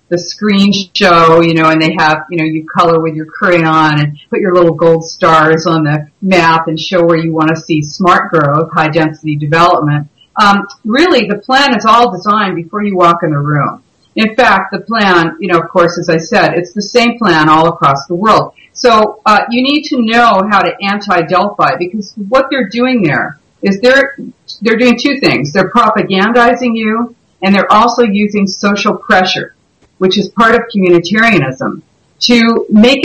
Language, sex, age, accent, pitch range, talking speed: English, female, 50-69, American, 170-230 Hz, 190 wpm